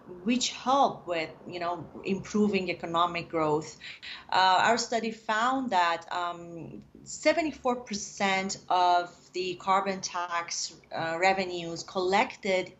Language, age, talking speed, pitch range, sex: English, 30-49, 105 wpm, 175-210 Hz, female